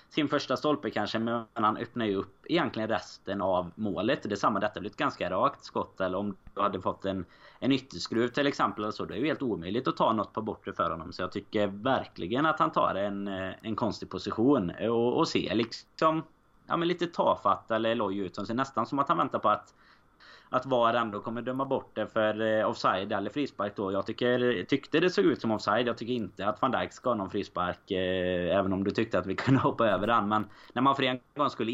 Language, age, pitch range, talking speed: Swedish, 20-39, 100-125 Hz, 230 wpm